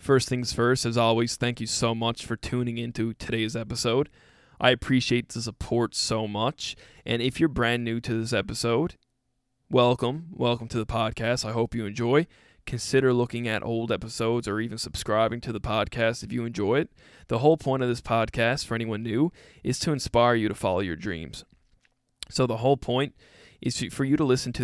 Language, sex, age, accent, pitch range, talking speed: English, male, 20-39, American, 110-125 Hz, 190 wpm